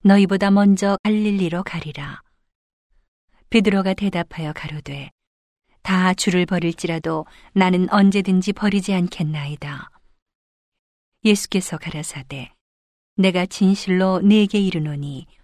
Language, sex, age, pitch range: Korean, female, 40-59, 160-200 Hz